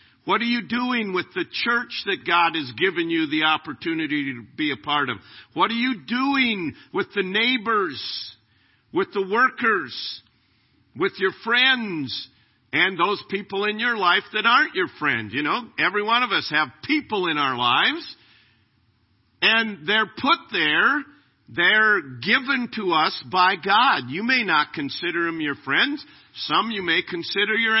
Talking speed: 160 wpm